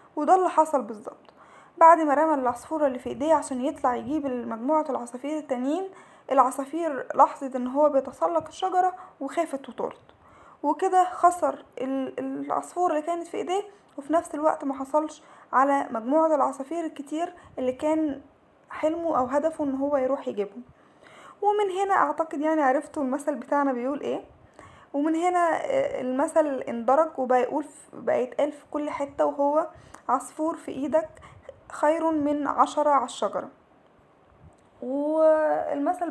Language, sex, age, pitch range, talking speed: Arabic, female, 10-29, 270-315 Hz, 130 wpm